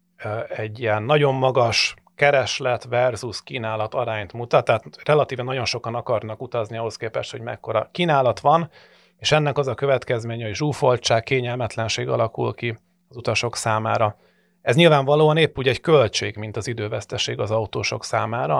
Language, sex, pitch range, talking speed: Hungarian, male, 115-155 Hz, 150 wpm